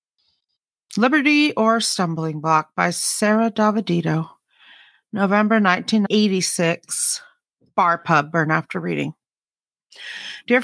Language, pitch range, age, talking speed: English, 185-230 Hz, 40-59, 95 wpm